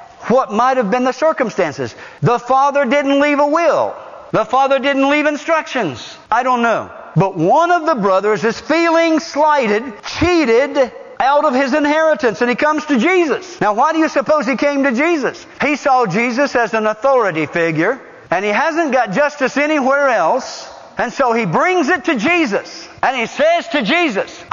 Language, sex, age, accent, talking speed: English, male, 50-69, American, 180 wpm